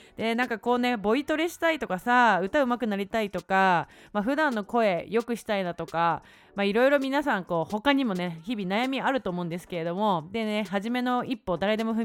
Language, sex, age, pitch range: Japanese, female, 30-49, 185-255 Hz